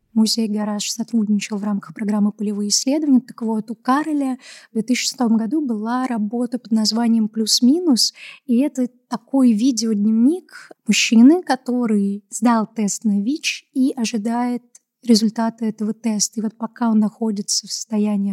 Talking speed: 140 wpm